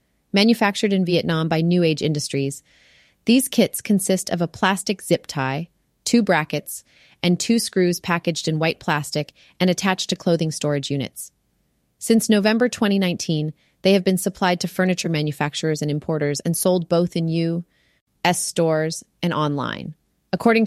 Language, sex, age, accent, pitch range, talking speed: English, female, 30-49, American, 155-195 Hz, 150 wpm